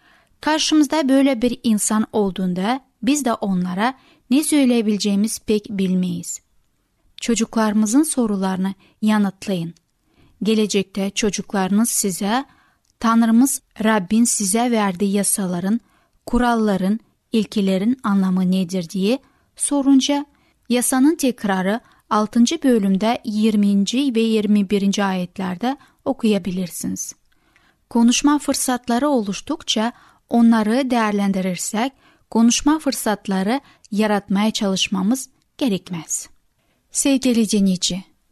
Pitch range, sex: 200-255 Hz, female